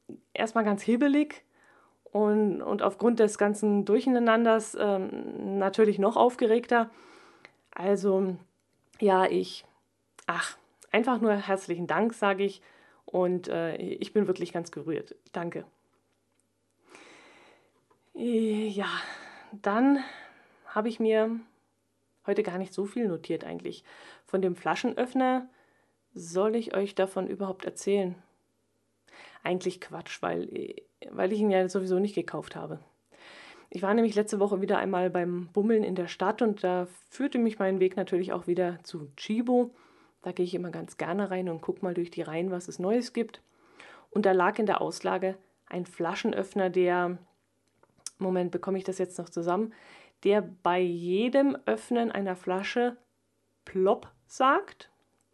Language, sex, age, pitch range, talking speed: German, female, 20-39, 185-225 Hz, 140 wpm